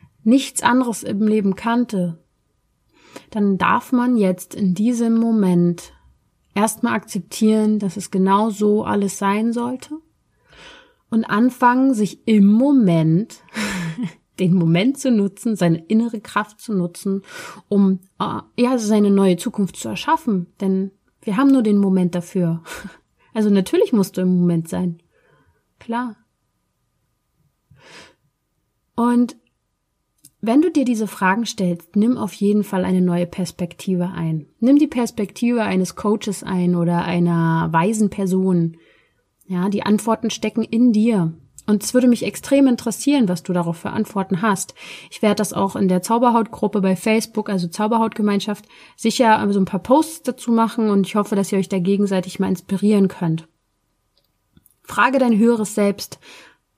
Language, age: German, 30-49